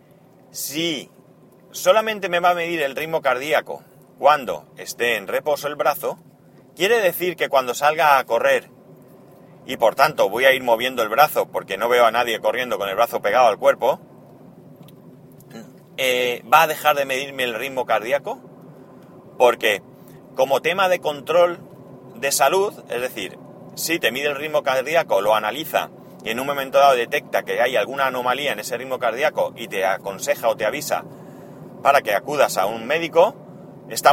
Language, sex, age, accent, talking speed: Spanish, male, 30-49, Spanish, 170 wpm